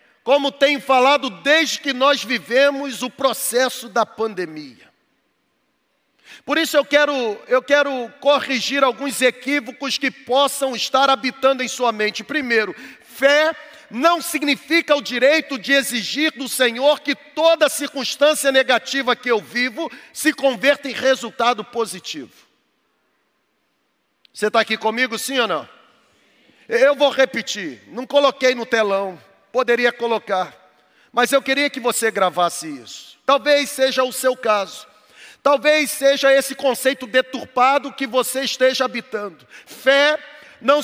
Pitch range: 250-285 Hz